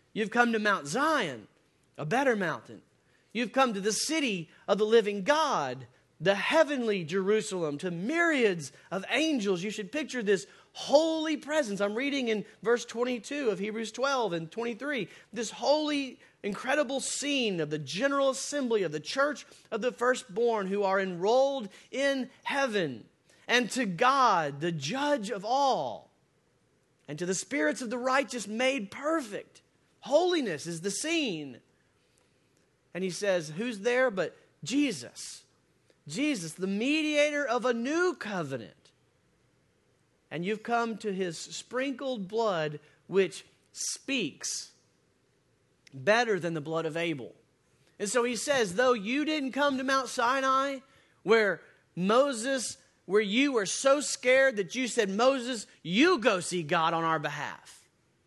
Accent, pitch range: American, 195-270 Hz